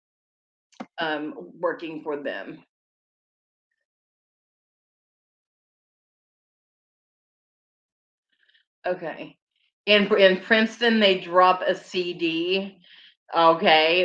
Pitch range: 170-210 Hz